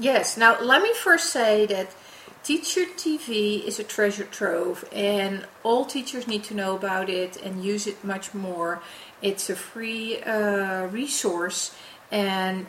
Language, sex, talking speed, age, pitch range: English, female, 150 wpm, 40-59, 190-225 Hz